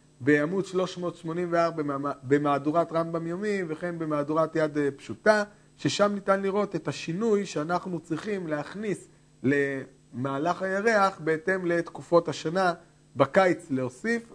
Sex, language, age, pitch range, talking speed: male, Hebrew, 40-59, 150-190 Hz, 100 wpm